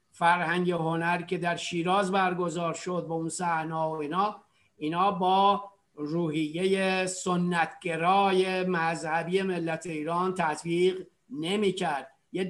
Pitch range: 175-195 Hz